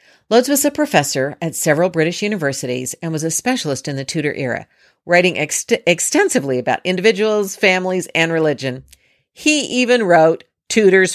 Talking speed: 145 wpm